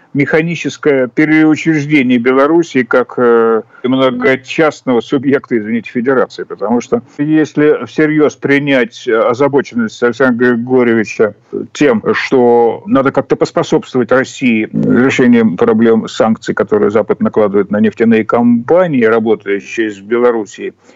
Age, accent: 50-69, native